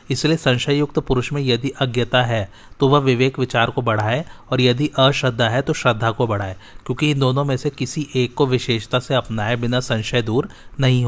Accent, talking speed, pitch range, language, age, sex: native, 200 wpm, 115-135 Hz, Hindi, 30-49, male